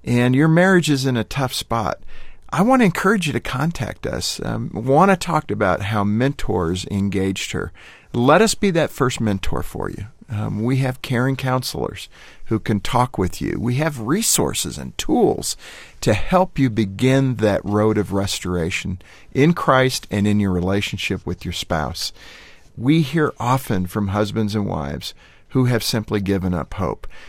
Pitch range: 95-135 Hz